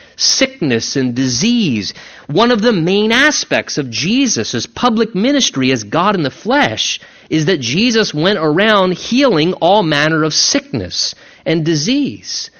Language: English